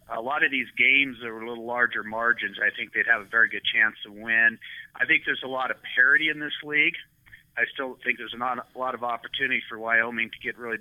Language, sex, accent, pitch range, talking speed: English, male, American, 115-130 Hz, 240 wpm